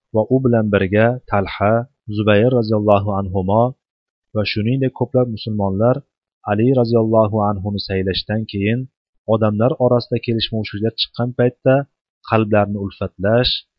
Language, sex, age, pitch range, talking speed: Russian, male, 30-49, 100-120 Hz, 125 wpm